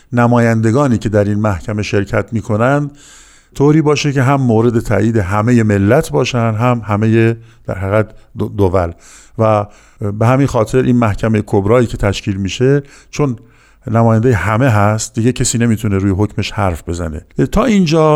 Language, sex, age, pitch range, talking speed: Persian, male, 50-69, 100-130 Hz, 150 wpm